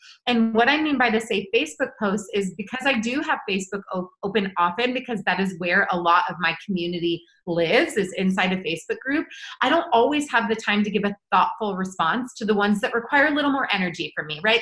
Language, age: English, 30-49